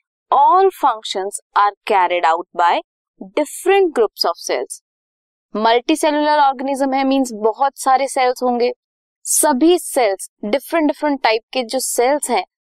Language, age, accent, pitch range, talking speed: Hindi, 20-39, native, 220-300 Hz, 130 wpm